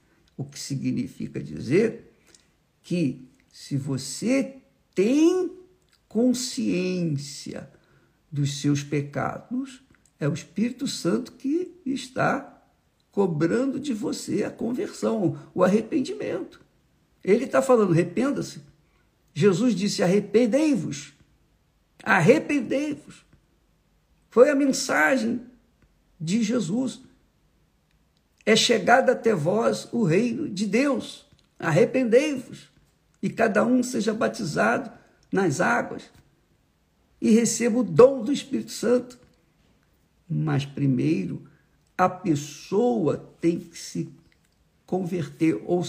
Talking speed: 90 wpm